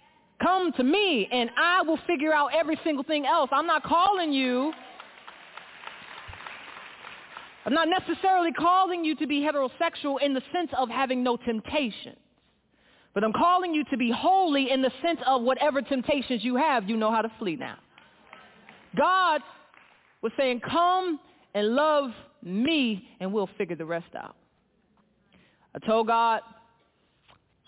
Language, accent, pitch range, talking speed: English, American, 200-290 Hz, 150 wpm